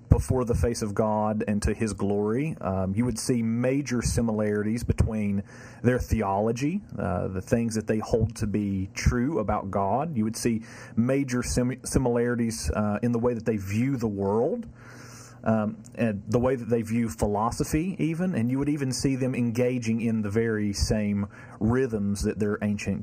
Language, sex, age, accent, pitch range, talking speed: English, male, 40-59, American, 100-120 Hz, 175 wpm